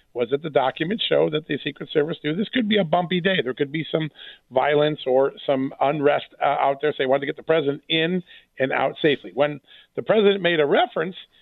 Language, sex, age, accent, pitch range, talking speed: English, male, 50-69, American, 140-165 Hz, 230 wpm